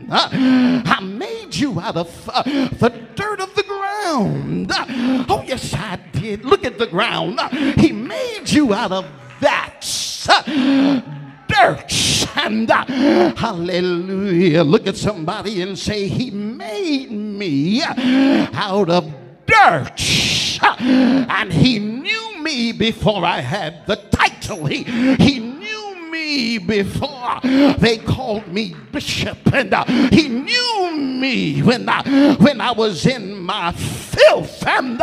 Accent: American